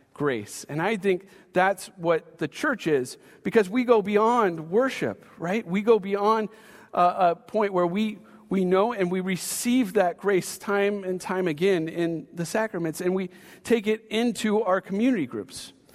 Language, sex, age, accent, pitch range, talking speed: English, male, 40-59, American, 170-215 Hz, 170 wpm